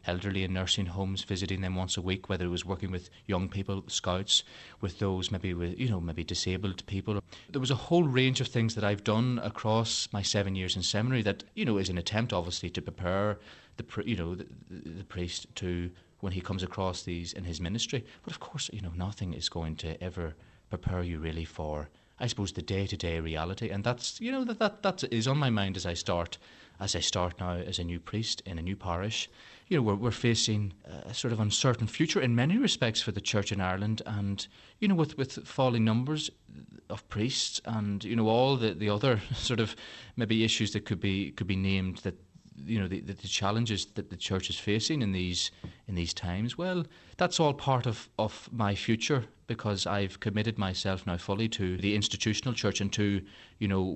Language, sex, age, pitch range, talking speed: English, male, 30-49, 95-115 Hz, 215 wpm